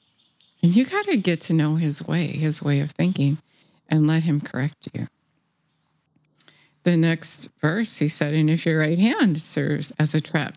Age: 50-69